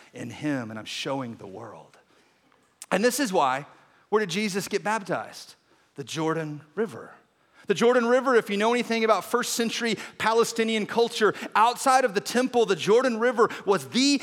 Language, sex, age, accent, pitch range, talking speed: English, male, 30-49, American, 175-240 Hz, 170 wpm